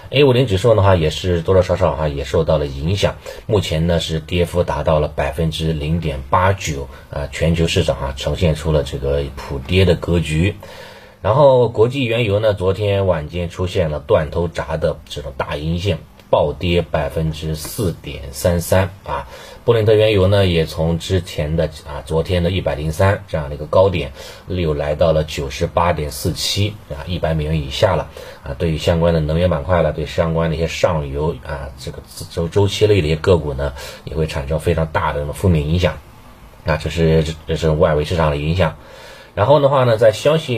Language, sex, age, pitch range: Chinese, male, 30-49, 75-95 Hz